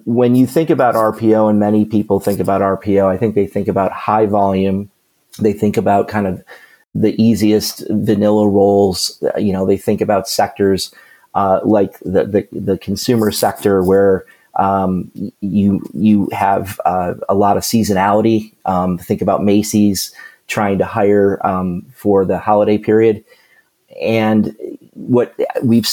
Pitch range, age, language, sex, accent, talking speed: 95-105 Hz, 30-49, English, male, American, 150 wpm